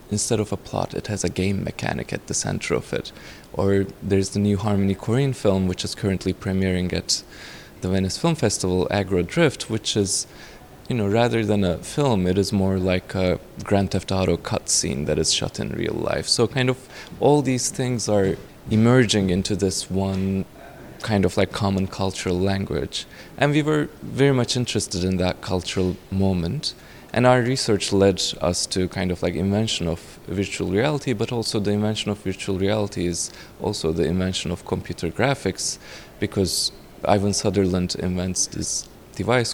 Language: English